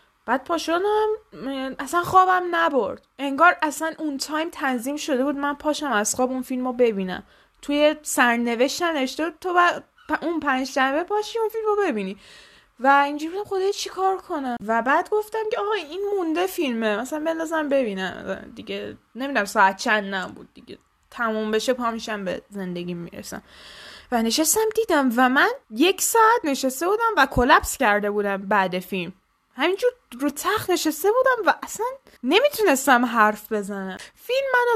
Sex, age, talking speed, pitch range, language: female, 20-39, 150 wpm, 215-330 Hz, Persian